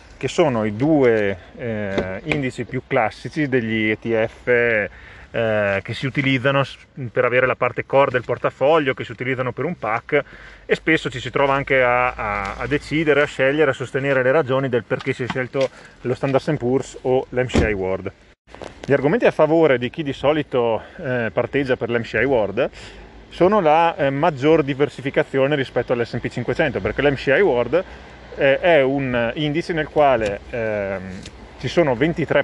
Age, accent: 30-49, native